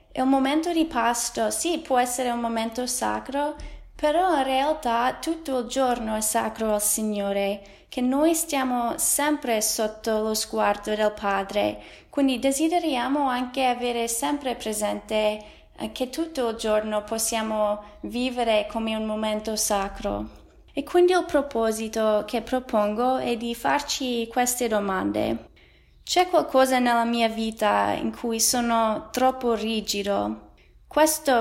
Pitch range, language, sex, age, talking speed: 215-255 Hz, Italian, female, 20-39, 130 wpm